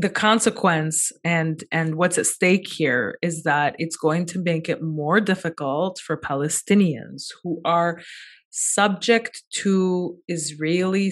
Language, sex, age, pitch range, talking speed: English, female, 20-39, 165-220 Hz, 130 wpm